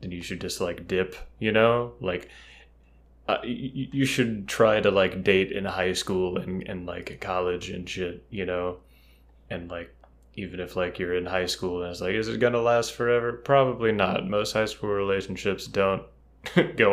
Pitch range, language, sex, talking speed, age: 90-115 Hz, English, male, 190 wpm, 20-39